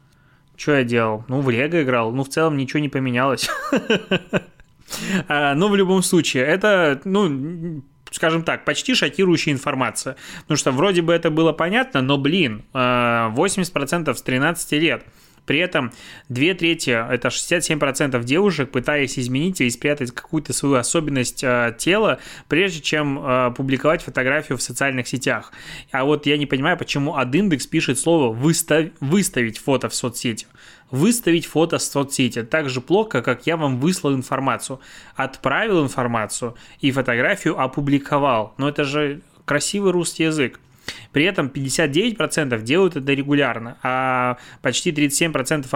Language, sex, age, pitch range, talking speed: Russian, male, 20-39, 130-165 Hz, 140 wpm